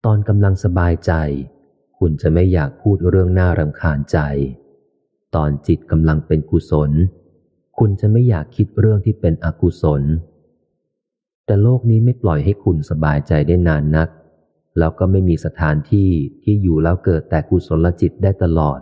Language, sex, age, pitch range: Thai, male, 30-49, 75-100 Hz